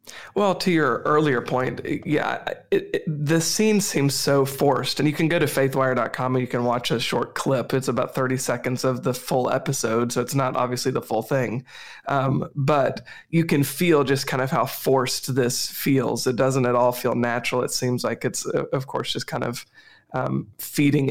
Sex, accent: male, American